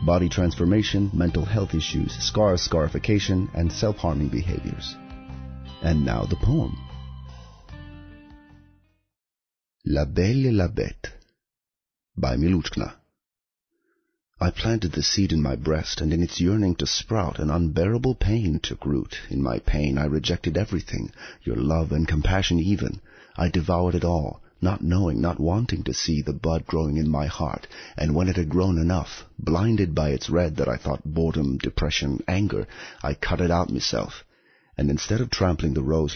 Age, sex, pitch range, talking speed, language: 30-49, male, 75-95 Hz, 155 wpm, English